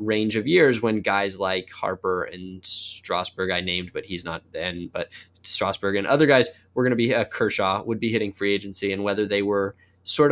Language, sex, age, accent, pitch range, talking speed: English, male, 20-39, American, 100-130 Hz, 210 wpm